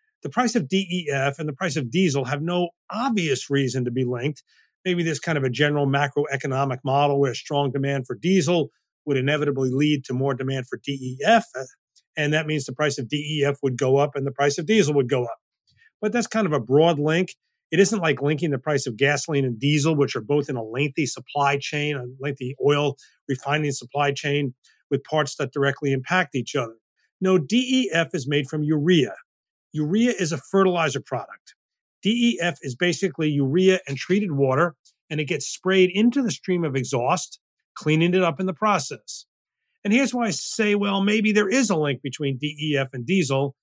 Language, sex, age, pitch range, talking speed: English, male, 40-59, 140-180 Hz, 195 wpm